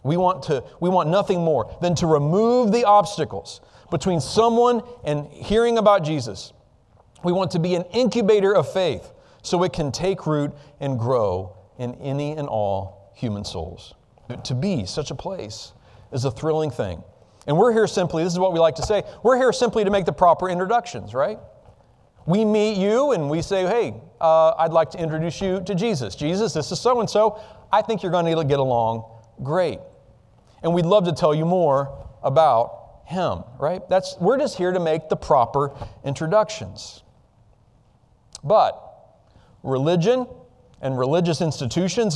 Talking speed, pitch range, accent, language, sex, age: 165 wpm, 130-200 Hz, American, English, male, 40-59